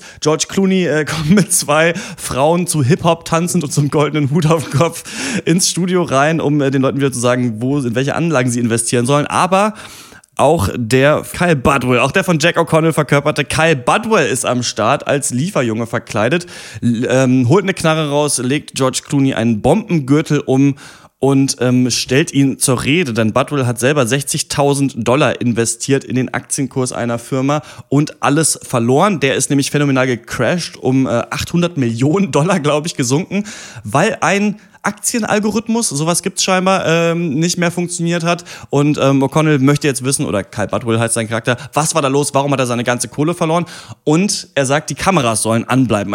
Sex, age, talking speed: male, 30-49, 180 wpm